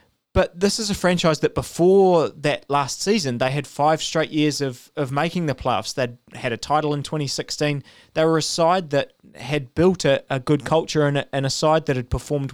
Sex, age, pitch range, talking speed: male, 20-39, 135-155 Hz, 215 wpm